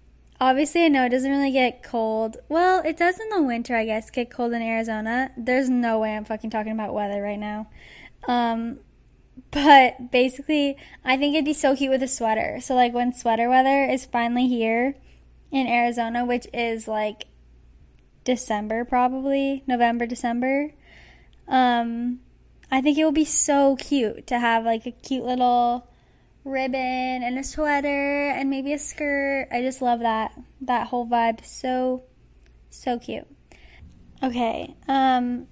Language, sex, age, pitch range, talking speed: English, female, 10-29, 235-270 Hz, 155 wpm